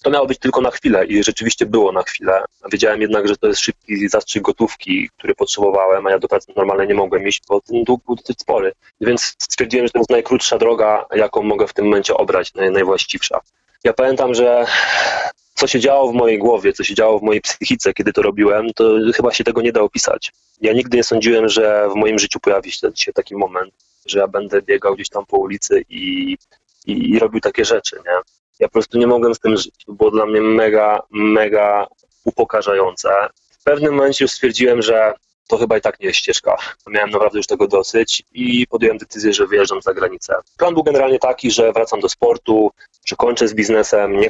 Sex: male